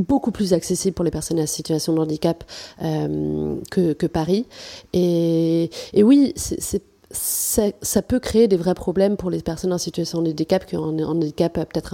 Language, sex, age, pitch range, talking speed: French, female, 30-49, 165-195 Hz, 195 wpm